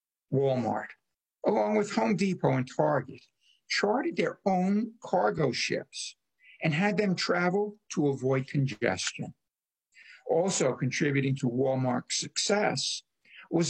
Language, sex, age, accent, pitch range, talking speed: English, male, 60-79, American, 135-190 Hz, 110 wpm